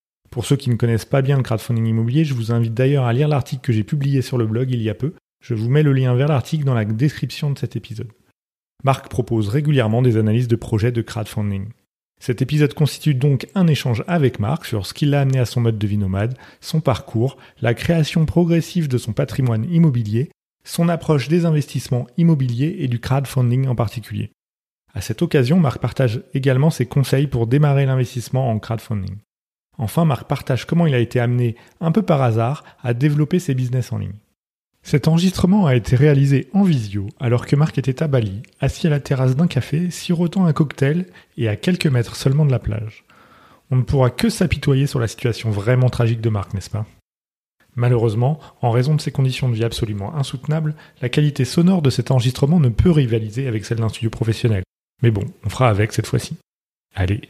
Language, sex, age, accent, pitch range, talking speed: French, male, 30-49, French, 115-150 Hz, 205 wpm